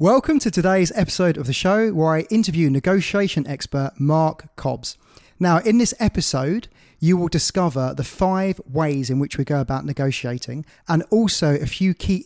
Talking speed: 170 wpm